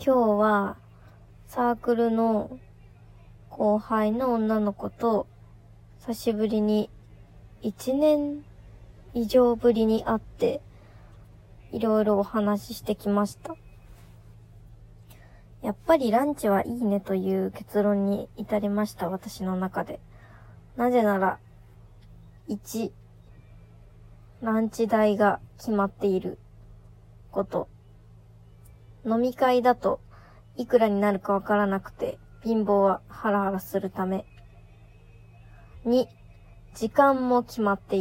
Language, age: Japanese, 20-39